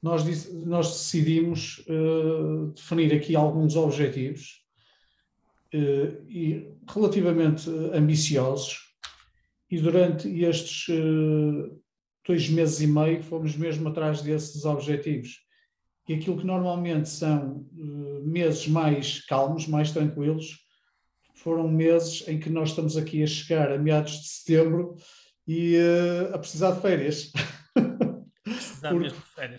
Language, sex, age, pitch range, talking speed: Portuguese, male, 50-69, 150-170 Hz, 110 wpm